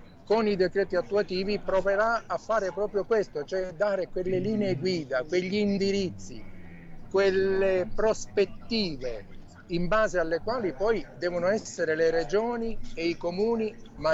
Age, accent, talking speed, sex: 50-69, native, 130 wpm, male